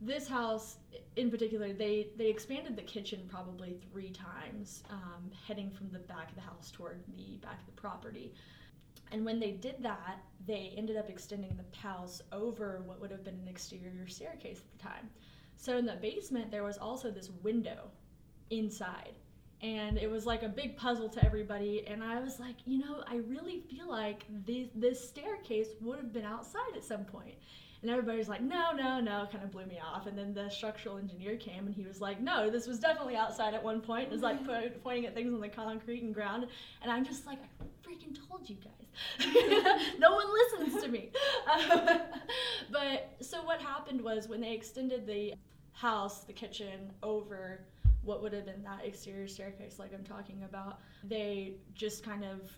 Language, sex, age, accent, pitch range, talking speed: English, female, 10-29, American, 200-245 Hz, 195 wpm